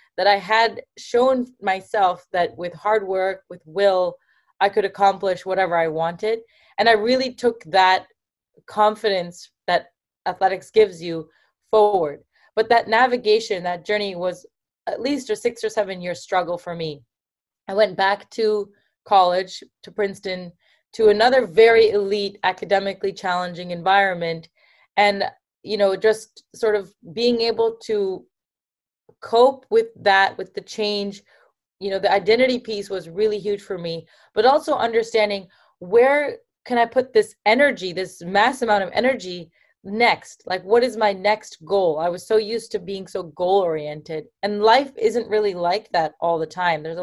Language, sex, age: English, female, 20-39